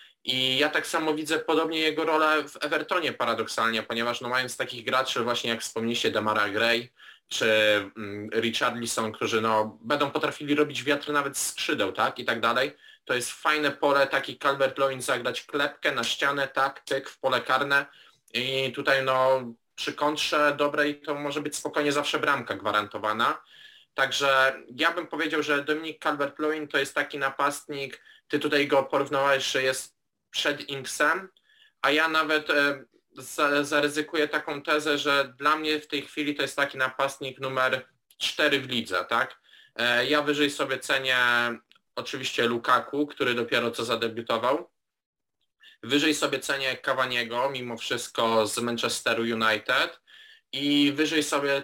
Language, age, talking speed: Polish, 20-39, 150 wpm